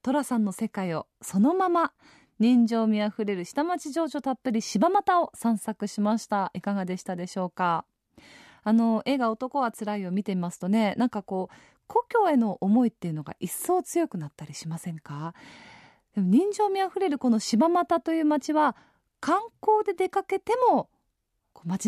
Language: Japanese